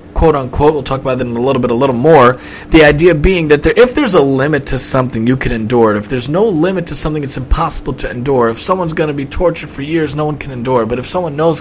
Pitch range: 140-180 Hz